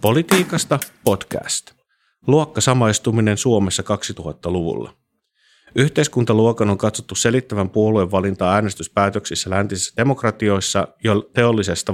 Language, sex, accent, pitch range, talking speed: Finnish, male, native, 95-120 Hz, 80 wpm